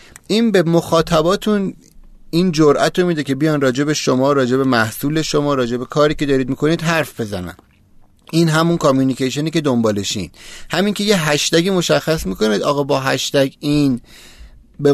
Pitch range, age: 125-160 Hz, 30-49